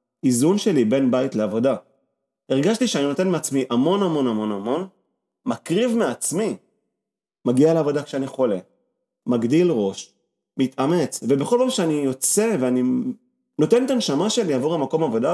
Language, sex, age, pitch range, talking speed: Hebrew, male, 30-49, 135-215 Hz, 135 wpm